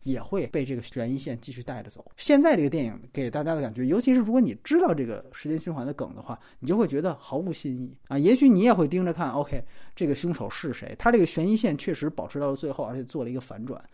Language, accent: Chinese, native